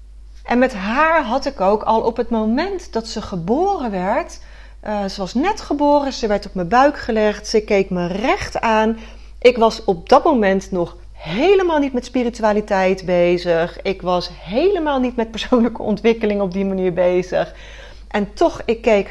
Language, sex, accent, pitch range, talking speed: Dutch, female, Dutch, 185-255 Hz, 175 wpm